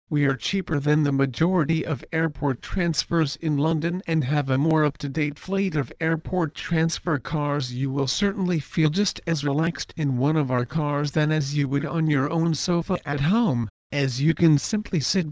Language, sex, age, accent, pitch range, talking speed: English, male, 50-69, American, 140-170 Hz, 190 wpm